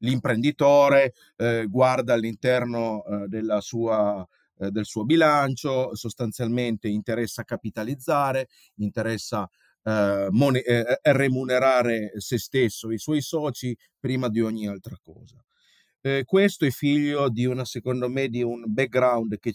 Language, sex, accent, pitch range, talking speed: Italian, male, native, 110-130 Hz, 110 wpm